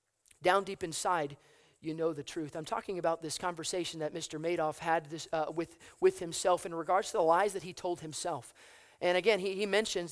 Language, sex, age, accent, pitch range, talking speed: English, male, 30-49, American, 170-205 Hz, 200 wpm